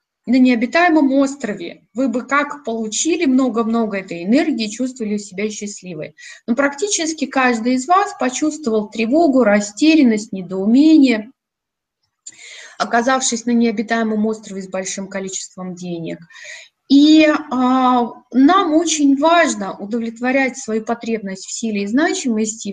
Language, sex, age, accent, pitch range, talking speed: Russian, female, 20-39, native, 215-290 Hz, 110 wpm